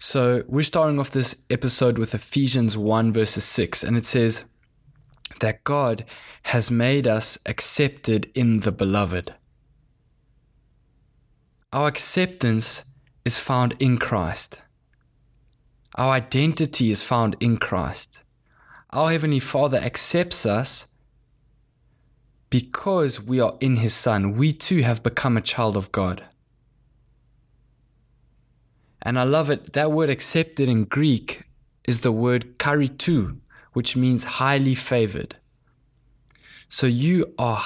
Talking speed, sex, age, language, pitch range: 120 wpm, male, 20-39, English, 115-150 Hz